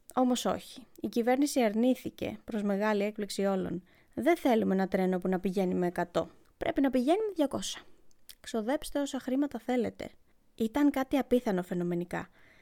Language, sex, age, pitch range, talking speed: Greek, female, 20-39, 195-265 Hz, 145 wpm